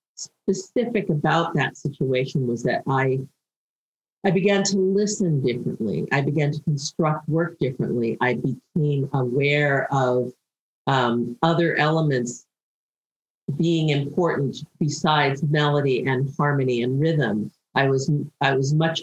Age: 50-69